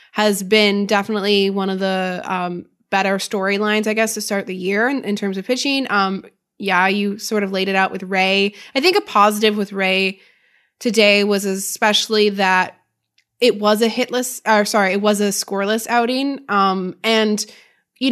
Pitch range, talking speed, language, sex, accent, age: 195-225 Hz, 180 wpm, English, female, American, 20-39